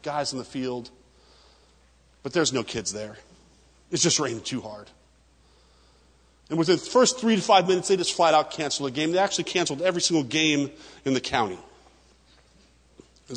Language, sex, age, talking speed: English, male, 40-59, 180 wpm